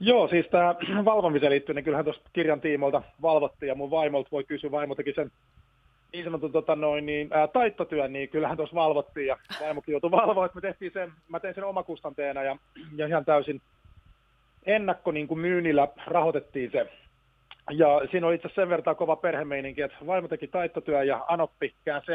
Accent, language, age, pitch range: native, Finnish, 30-49, 140-170 Hz